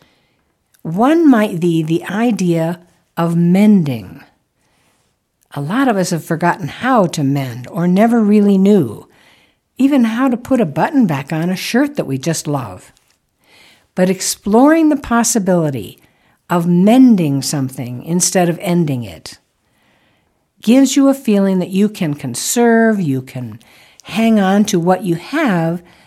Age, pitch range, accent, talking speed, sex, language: 60-79, 150-225 Hz, American, 140 wpm, female, English